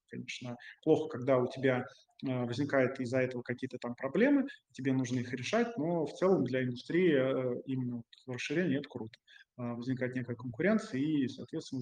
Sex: male